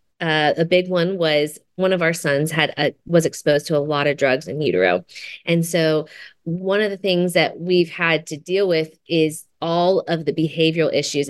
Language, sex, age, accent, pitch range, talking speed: English, female, 30-49, American, 150-175 Hz, 200 wpm